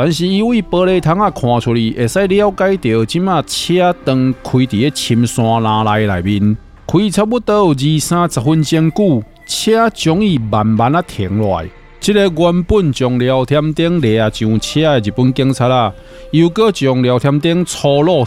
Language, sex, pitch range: Chinese, male, 115-175 Hz